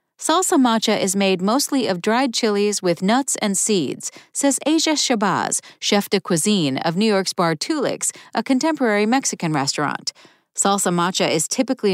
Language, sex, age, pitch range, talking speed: English, female, 40-59, 180-255 Hz, 155 wpm